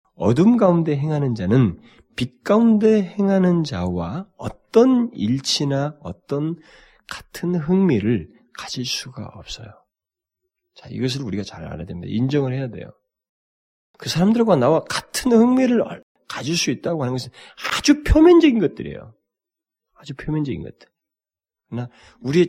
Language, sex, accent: Korean, male, native